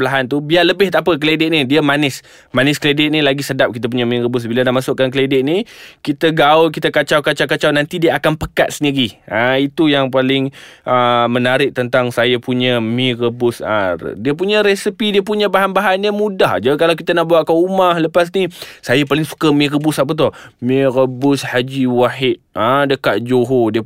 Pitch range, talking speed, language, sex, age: 125-160 Hz, 200 wpm, Malay, male, 20-39